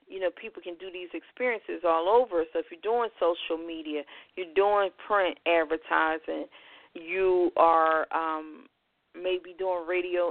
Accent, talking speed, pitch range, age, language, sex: American, 145 wpm, 170-195 Hz, 40-59, English, female